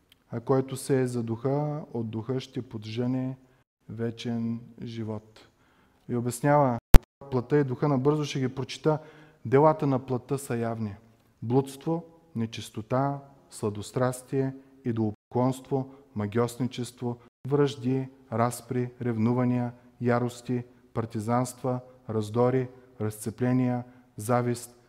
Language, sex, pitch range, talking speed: Bulgarian, male, 115-135 Hz, 95 wpm